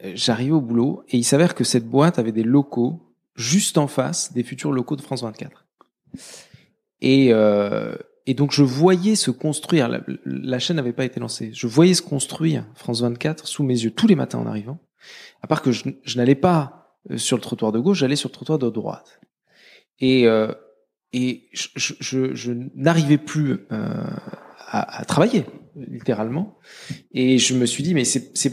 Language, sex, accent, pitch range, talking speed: French, male, French, 115-155 Hz, 185 wpm